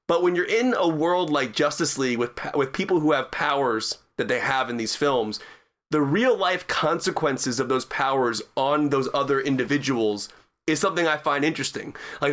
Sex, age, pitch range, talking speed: male, 30-49, 135-175 Hz, 180 wpm